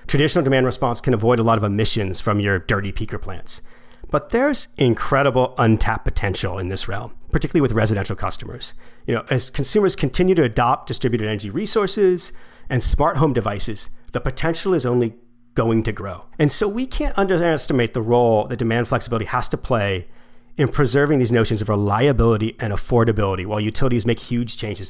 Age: 40-59